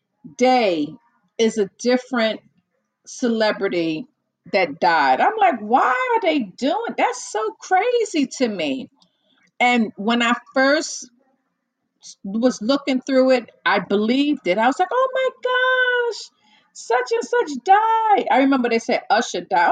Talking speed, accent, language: 135 wpm, American, English